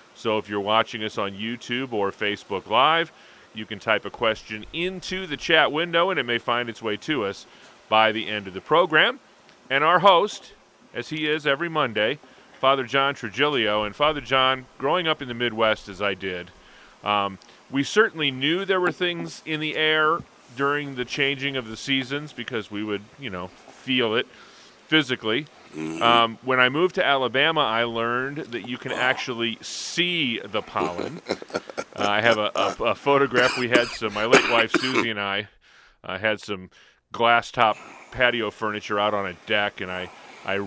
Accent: American